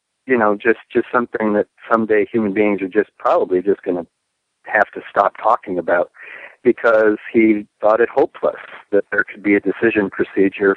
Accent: American